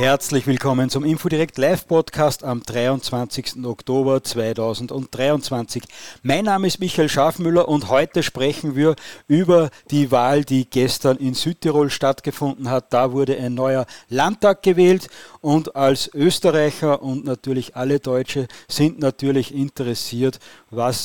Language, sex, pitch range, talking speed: German, male, 130-165 Hz, 125 wpm